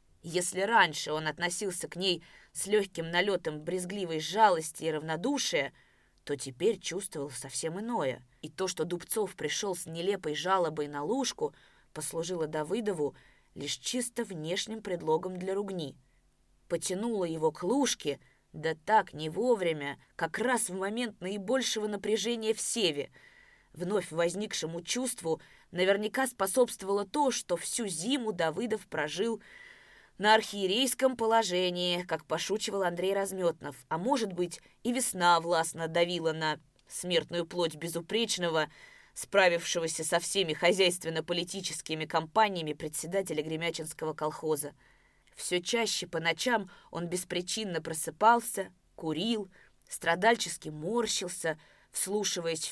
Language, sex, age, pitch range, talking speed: Russian, female, 20-39, 160-205 Hz, 115 wpm